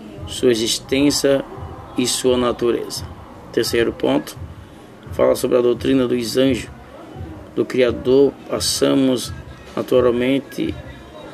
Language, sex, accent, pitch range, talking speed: Portuguese, male, Brazilian, 120-140 Hz, 90 wpm